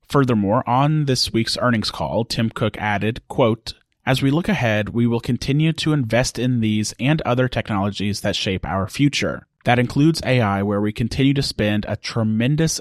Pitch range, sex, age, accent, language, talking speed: 105-130 Hz, male, 30-49, American, English, 180 wpm